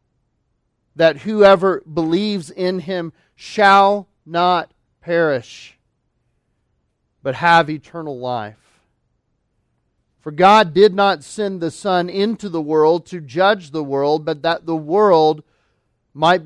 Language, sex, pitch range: English, male, 140-180 Hz